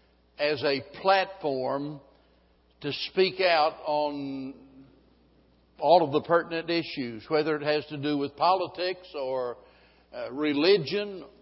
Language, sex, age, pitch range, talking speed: English, male, 60-79, 145-180 Hz, 115 wpm